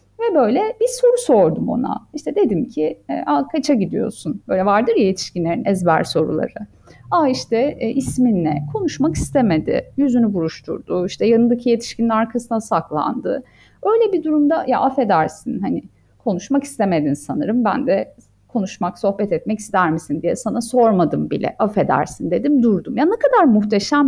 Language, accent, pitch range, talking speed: Turkish, native, 190-265 Hz, 140 wpm